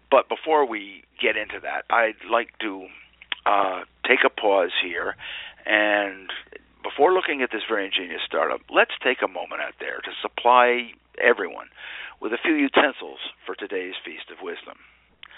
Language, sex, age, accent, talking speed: English, male, 50-69, American, 155 wpm